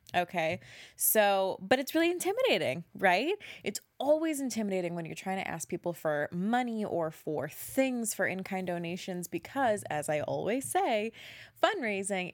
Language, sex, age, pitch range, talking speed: English, female, 20-39, 170-235 Hz, 145 wpm